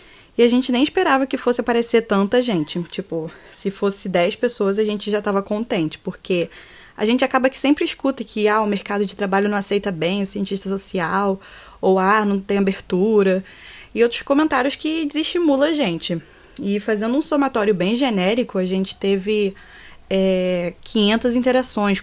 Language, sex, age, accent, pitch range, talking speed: Portuguese, female, 10-29, Brazilian, 190-235 Hz, 170 wpm